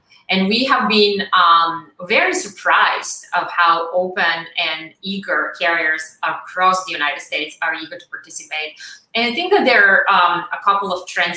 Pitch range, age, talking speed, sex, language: 160-185 Hz, 30-49, 170 wpm, female, English